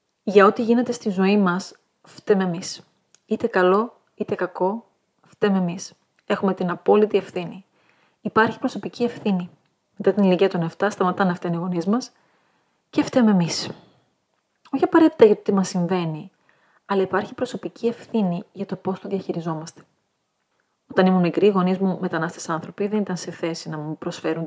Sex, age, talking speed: female, 30-49, 160 wpm